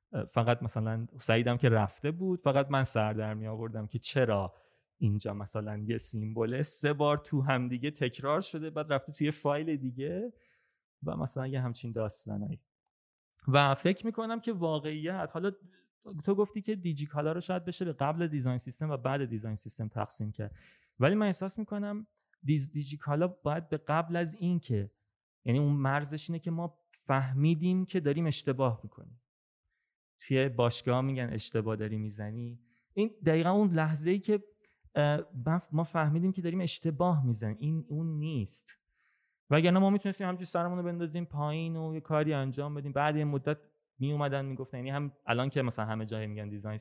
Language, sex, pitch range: Persian, male, 120-170 Hz